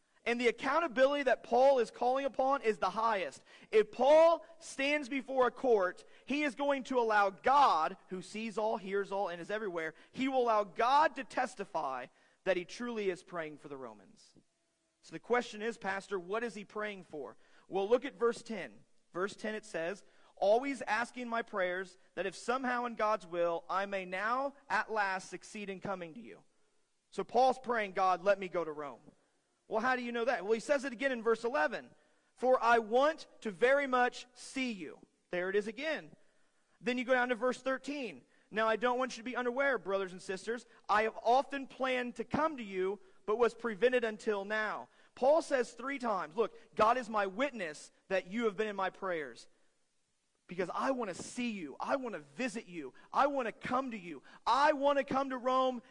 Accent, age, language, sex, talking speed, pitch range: American, 40-59, English, male, 205 wpm, 200-260 Hz